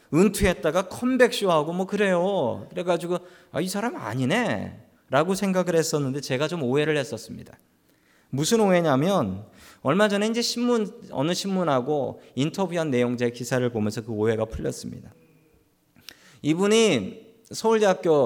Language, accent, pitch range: Korean, native, 135-205 Hz